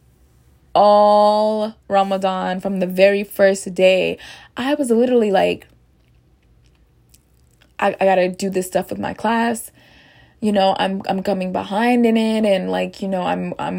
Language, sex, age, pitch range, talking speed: English, female, 20-39, 185-230 Hz, 150 wpm